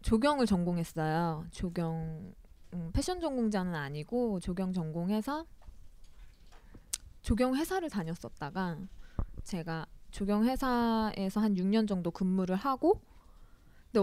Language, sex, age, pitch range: Korean, female, 20-39, 175-240 Hz